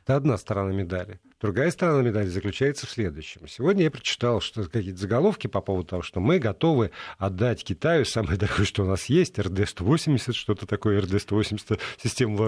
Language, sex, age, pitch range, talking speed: Russian, male, 50-69, 105-155 Hz, 170 wpm